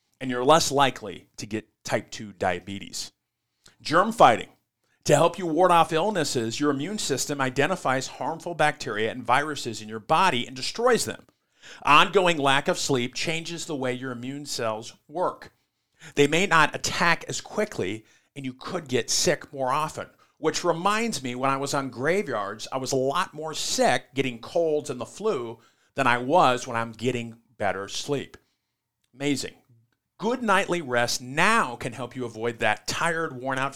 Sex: male